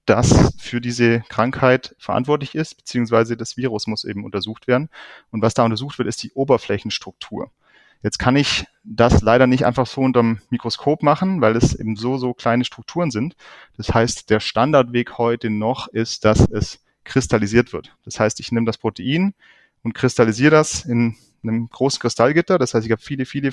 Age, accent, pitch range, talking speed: 30-49, German, 110-130 Hz, 180 wpm